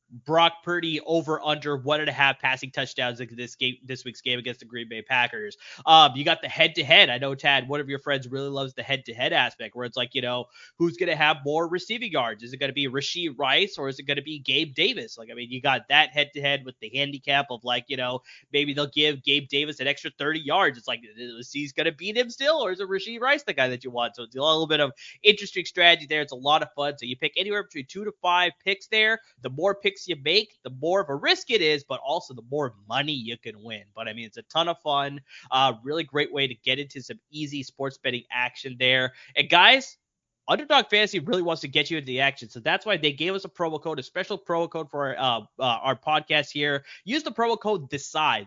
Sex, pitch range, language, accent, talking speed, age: male, 130-170 Hz, English, American, 255 wpm, 20-39